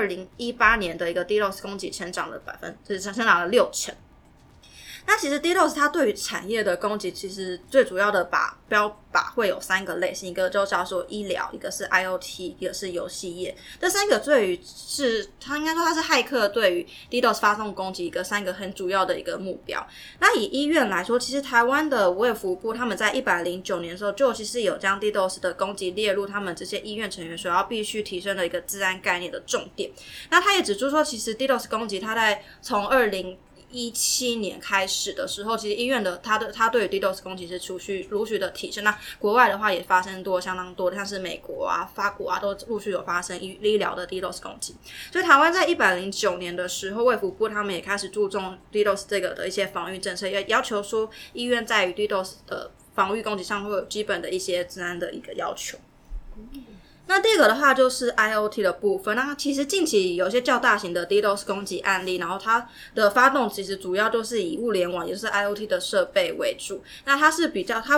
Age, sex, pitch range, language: 20-39, female, 185-235 Hz, Chinese